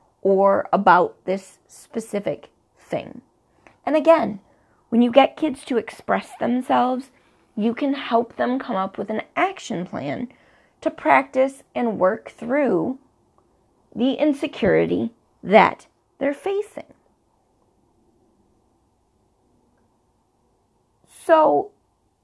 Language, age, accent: English, 30-49, American